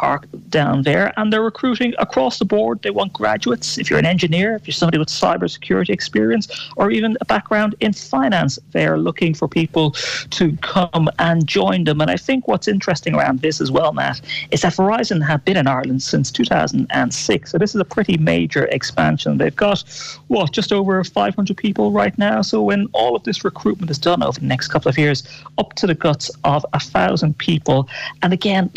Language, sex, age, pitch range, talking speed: English, male, 30-49, 140-185 Hz, 205 wpm